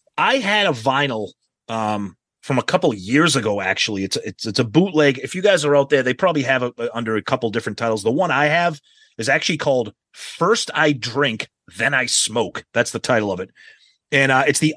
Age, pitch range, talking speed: 30-49, 120-160 Hz, 225 wpm